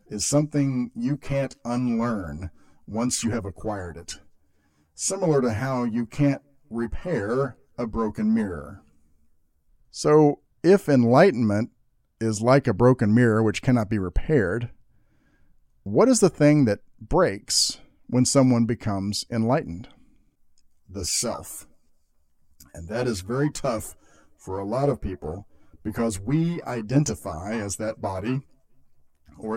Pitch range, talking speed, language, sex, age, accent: 80-125 Hz, 120 wpm, English, male, 50-69, American